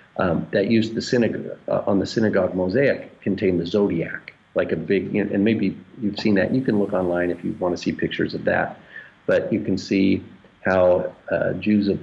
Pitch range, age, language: 90-110 Hz, 50-69, English